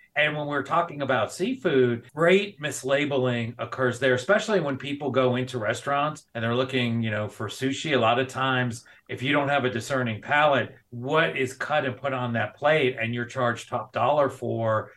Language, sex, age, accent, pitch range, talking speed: English, male, 40-59, American, 115-135 Hz, 195 wpm